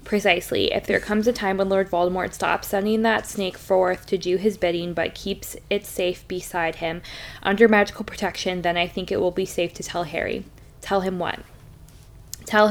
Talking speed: 195 wpm